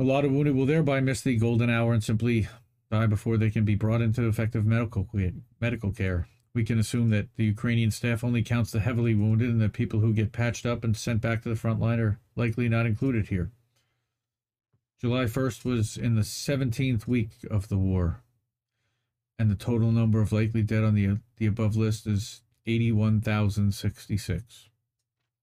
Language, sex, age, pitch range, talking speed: English, male, 40-59, 110-125 Hz, 185 wpm